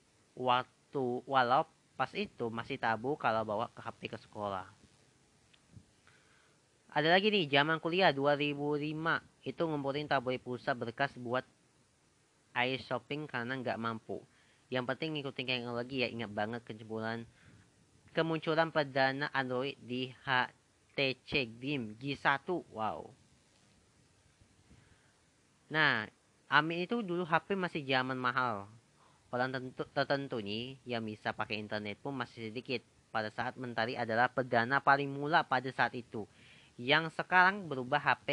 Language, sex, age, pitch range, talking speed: Indonesian, female, 30-49, 115-145 Hz, 125 wpm